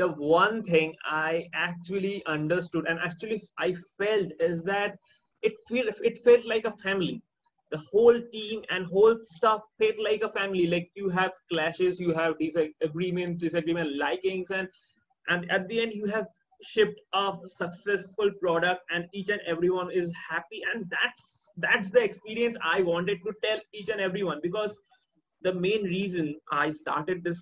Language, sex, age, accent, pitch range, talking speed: English, male, 30-49, Indian, 175-225 Hz, 165 wpm